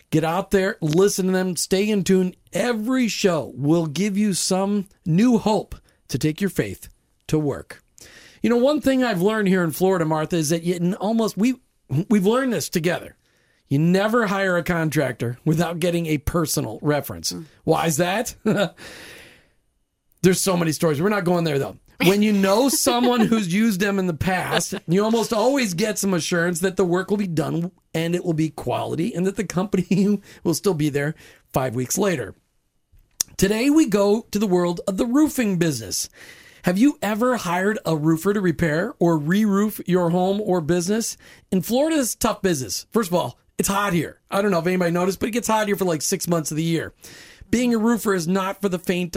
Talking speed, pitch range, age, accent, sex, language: 200 wpm, 165-210 Hz, 40-59, American, male, English